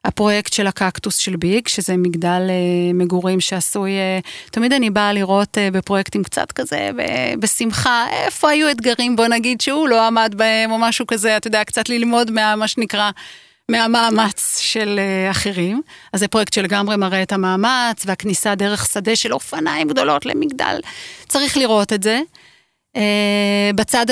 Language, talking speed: Hebrew, 145 wpm